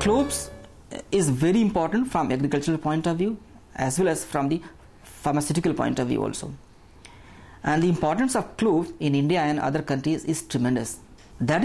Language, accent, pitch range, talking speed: English, Indian, 135-185 Hz, 165 wpm